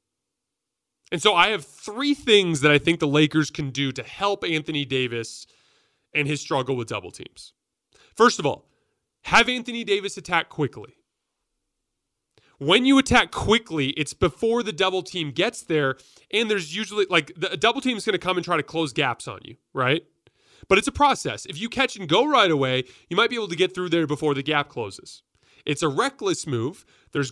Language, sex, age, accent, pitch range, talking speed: English, male, 30-49, American, 140-200 Hz, 195 wpm